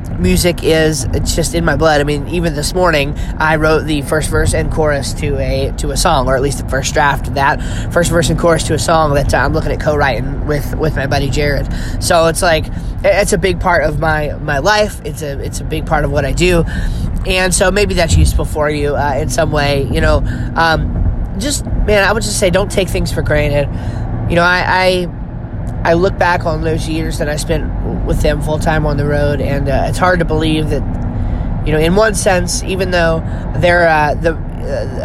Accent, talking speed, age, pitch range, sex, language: American, 230 wpm, 20-39, 130-160 Hz, male, English